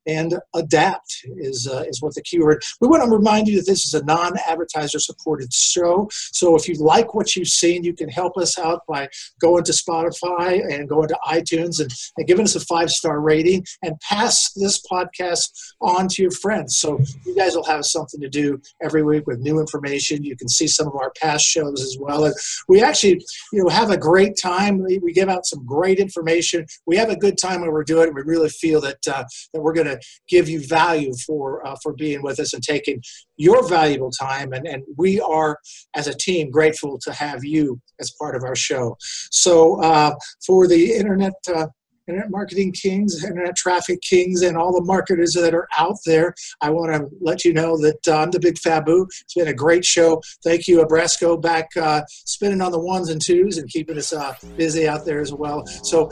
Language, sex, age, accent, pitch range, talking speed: English, male, 50-69, American, 155-180 Hz, 215 wpm